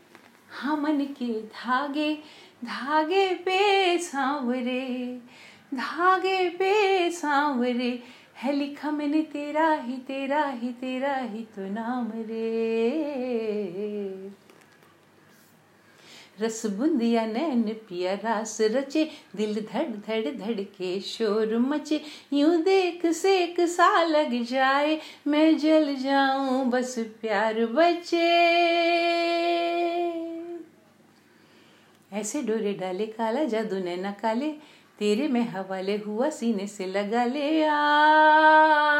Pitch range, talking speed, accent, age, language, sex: 230-340 Hz, 70 wpm, Indian, 50-69, English, female